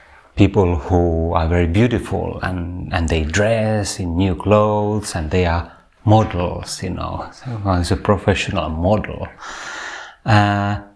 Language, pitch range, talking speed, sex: Finnish, 85-110 Hz, 125 wpm, male